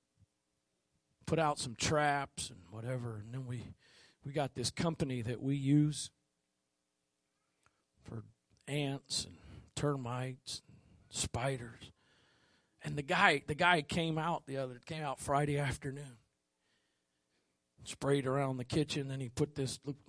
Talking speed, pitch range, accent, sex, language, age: 130 wpm, 110-170 Hz, American, male, English, 40-59